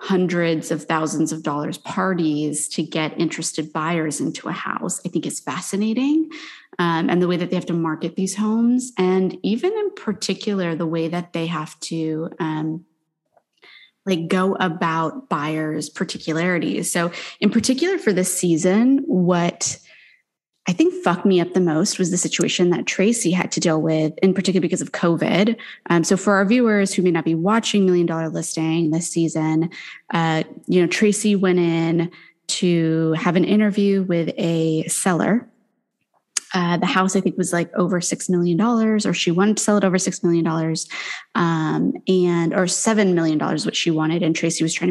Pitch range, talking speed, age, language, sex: 165-195 Hz, 175 wpm, 20-39, English, female